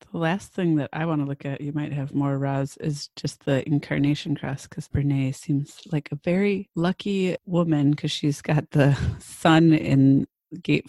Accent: American